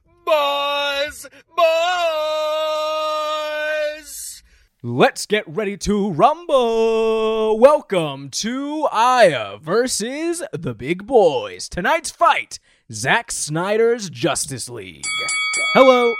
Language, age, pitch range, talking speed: English, 20-39, 135-225 Hz, 80 wpm